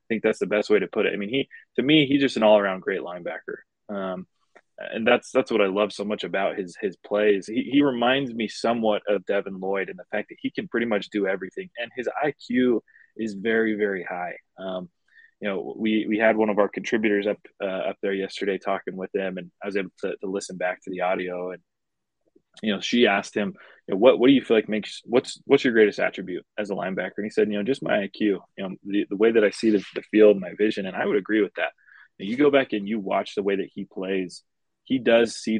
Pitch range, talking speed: 100-120 Hz, 255 wpm